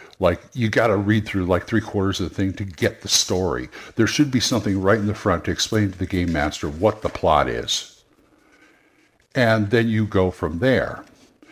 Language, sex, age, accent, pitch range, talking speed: English, male, 50-69, American, 95-120 Hz, 210 wpm